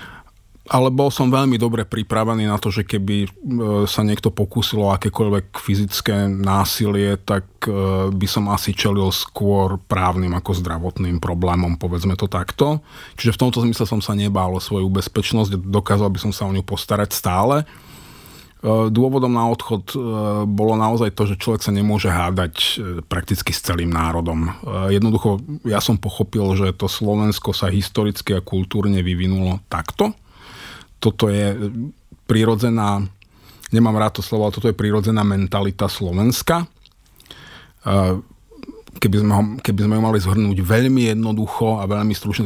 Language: Czech